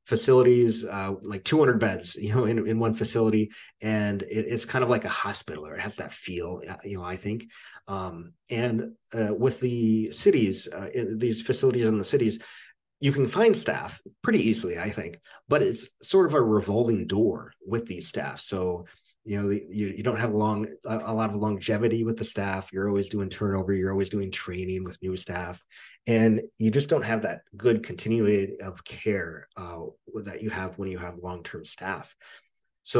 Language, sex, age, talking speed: English, male, 30-49, 195 wpm